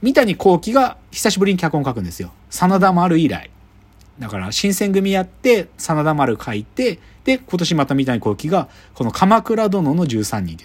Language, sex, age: Japanese, male, 40-59